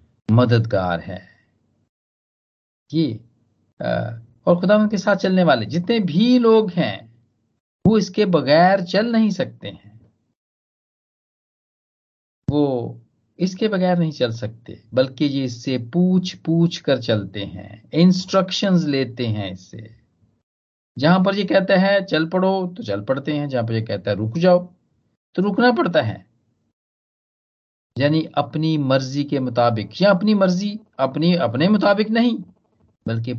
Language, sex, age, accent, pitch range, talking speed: Hindi, male, 50-69, native, 110-180 Hz, 130 wpm